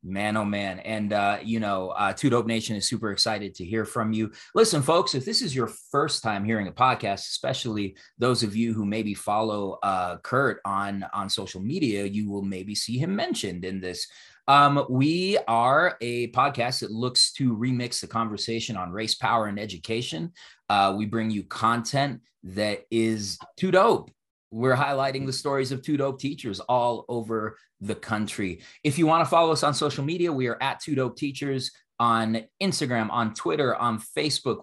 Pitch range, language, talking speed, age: 105-135 Hz, English, 185 wpm, 30-49